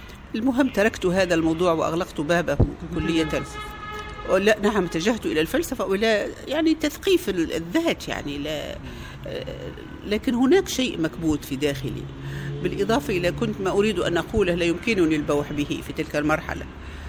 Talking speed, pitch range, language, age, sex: 135 wpm, 145-185 Hz, Arabic, 50-69, female